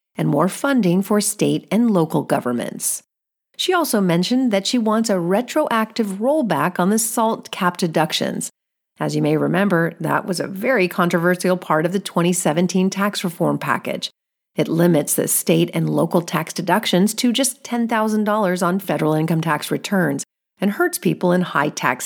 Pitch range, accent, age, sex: 165-220 Hz, American, 40-59, female